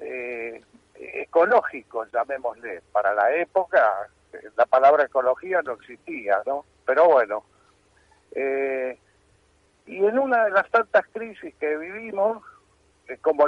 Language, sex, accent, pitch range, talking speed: Spanish, male, Argentinian, 140-210 Hz, 115 wpm